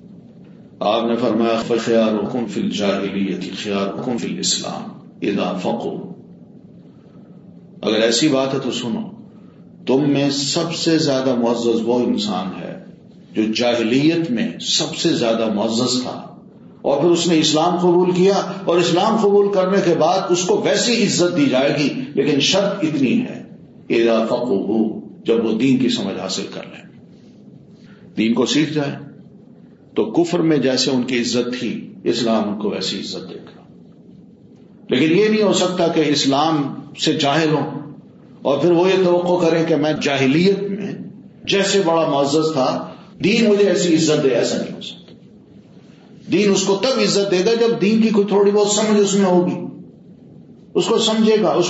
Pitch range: 135-200 Hz